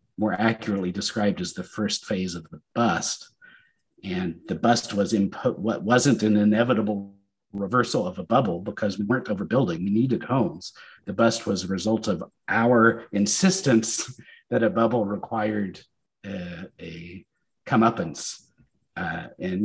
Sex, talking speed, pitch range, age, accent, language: male, 145 wpm, 100-115 Hz, 50-69, American, English